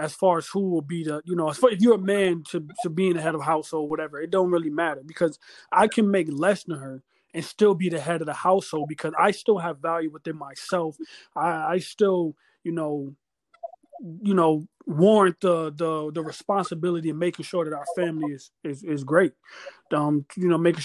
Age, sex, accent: 20-39, male, American